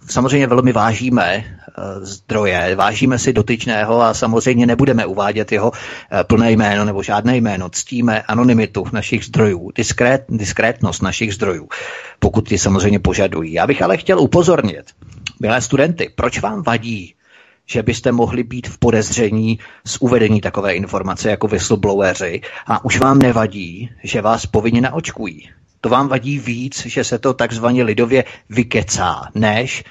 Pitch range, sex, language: 110-130 Hz, male, Czech